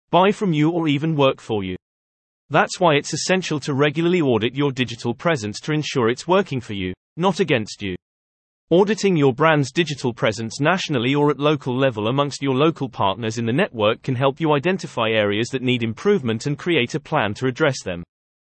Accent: British